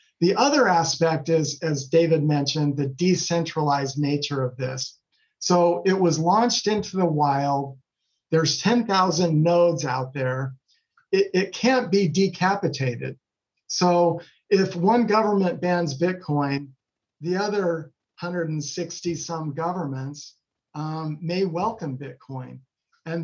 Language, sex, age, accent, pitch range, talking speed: English, male, 50-69, American, 140-175 Hz, 115 wpm